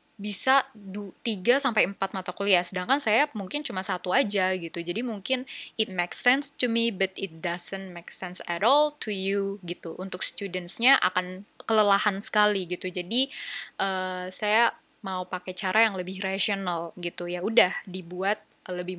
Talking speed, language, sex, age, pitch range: 160 wpm, Indonesian, female, 20-39, 185-225 Hz